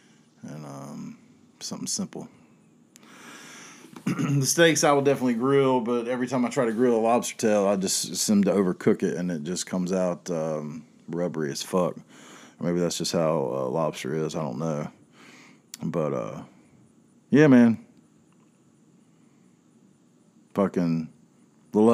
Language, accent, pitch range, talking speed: English, American, 80-120 Hz, 140 wpm